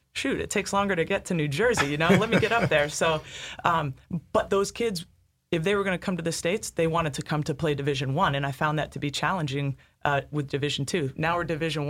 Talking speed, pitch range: 260 wpm, 145-160 Hz